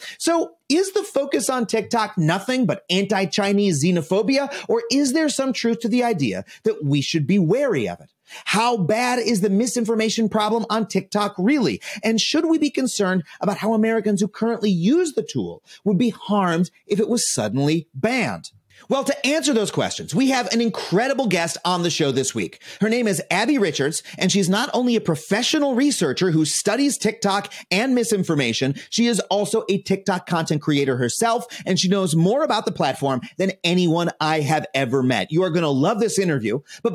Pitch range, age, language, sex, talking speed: 175-240 Hz, 30-49, English, male, 185 wpm